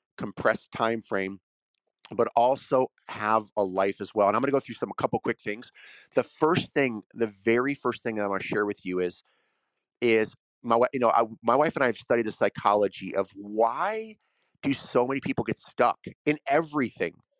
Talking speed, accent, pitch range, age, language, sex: 200 wpm, American, 100-125 Hz, 30-49, English, male